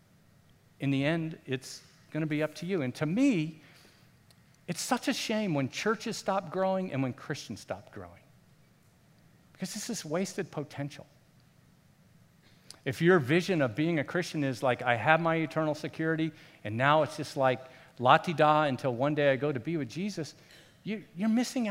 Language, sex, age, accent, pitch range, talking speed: English, male, 50-69, American, 125-165 Hz, 175 wpm